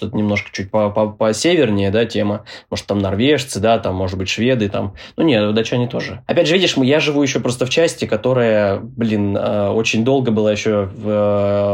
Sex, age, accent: male, 20-39, native